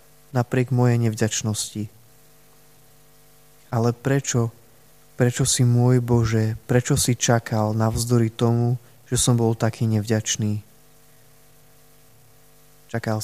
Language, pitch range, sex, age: Slovak, 115-130 Hz, male, 20-39